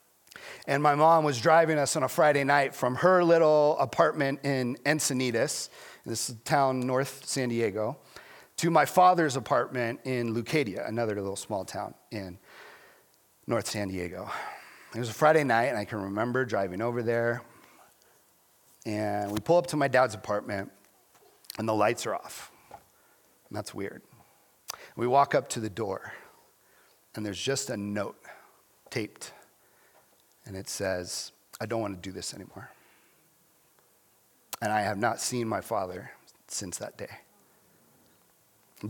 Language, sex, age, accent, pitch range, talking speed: English, male, 40-59, American, 110-145 Hz, 150 wpm